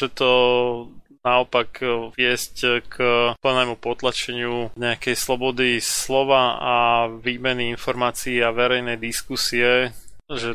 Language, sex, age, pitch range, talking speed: Slovak, male, 20-39, 115-130 Hz, 95 wpm